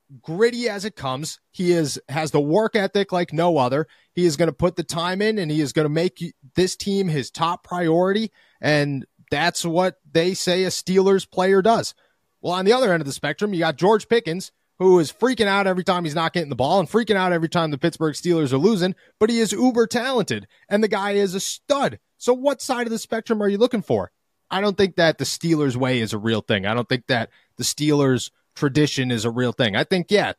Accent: American